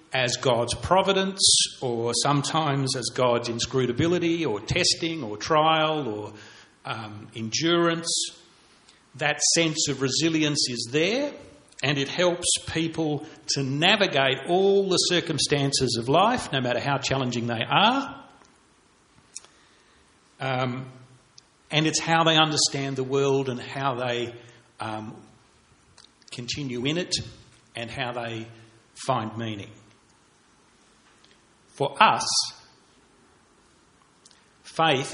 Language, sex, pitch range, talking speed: English, male, 120-150 Hz, 105 wpm